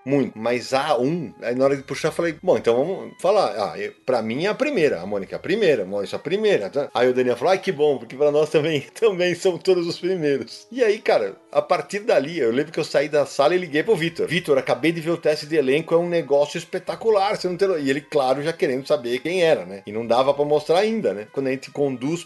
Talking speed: 265 wpm